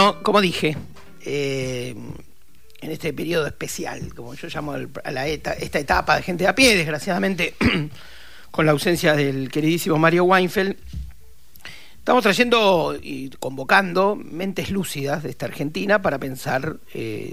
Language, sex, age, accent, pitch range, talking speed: Spanish, male, 40-59, Argentinian, 160-215 Hz, 140 wpm